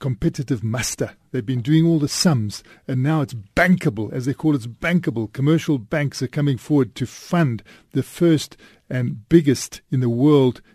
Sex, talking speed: male, 175 wpm